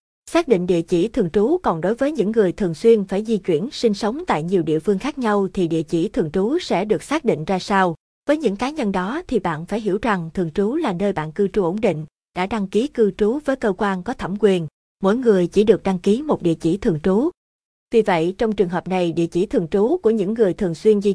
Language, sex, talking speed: Vietnamese, female, 260 wpm